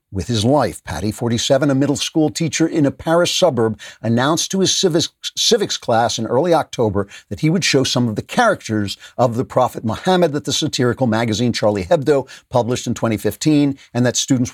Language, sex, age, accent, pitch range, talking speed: English, male, 50-69, American, 105-145 Hz, 190 wpm